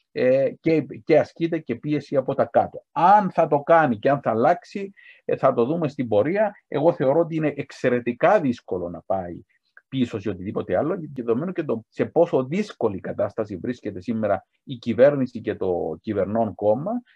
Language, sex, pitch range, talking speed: Greek, male, 100-150 Hz, 170 wpm